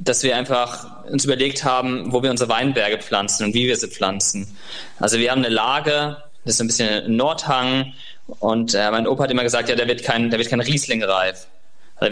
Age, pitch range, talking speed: 20-39, 115-135 Hz, 200 wpm